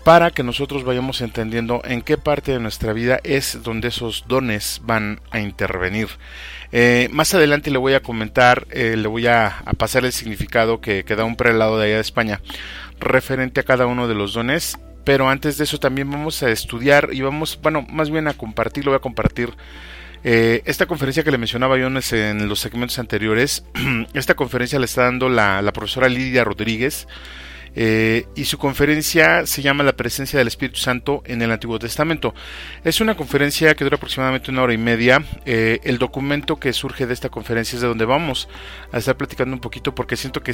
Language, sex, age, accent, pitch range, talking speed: Spanish, male, 40-59, Mexican, 110-135 Hz, 200 wpm